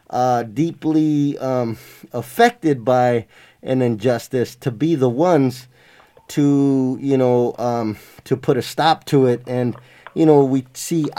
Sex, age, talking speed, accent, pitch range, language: male, 20-39, 140 wpm, American, 135-160 Hz, English